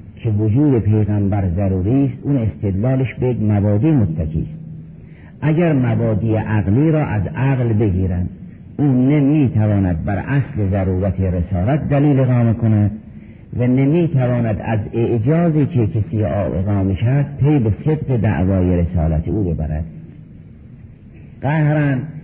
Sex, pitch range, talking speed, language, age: male, 105-140 Hz, 115 wpm, Persian, 50-69